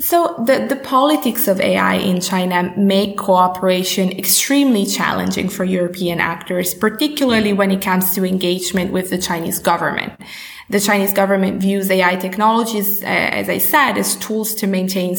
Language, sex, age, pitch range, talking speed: English, female, 20-39, 185-215 Hz, 155 wpm